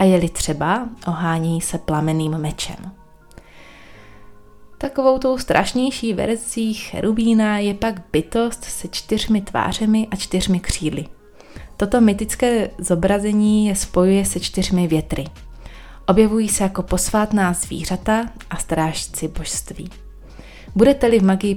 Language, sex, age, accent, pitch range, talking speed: Czech, female, 20-39, native, 155-210 Hz, 110 wpm